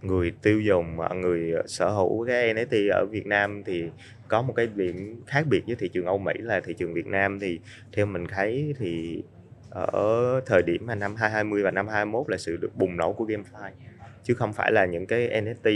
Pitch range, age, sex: 95-110 Hz, 20-39, male